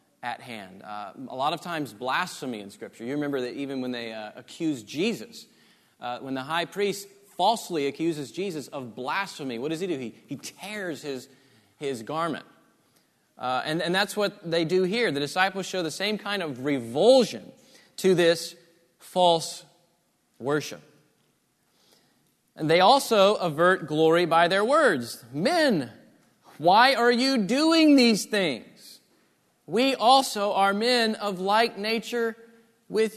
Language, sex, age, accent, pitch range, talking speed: English, male, 30-49, American, 145-210 Hz, 150 wpm